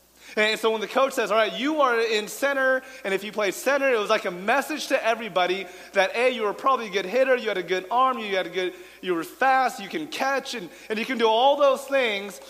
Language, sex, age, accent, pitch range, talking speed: English, male, 30-49, American, 200-265 Hz, 265 wpm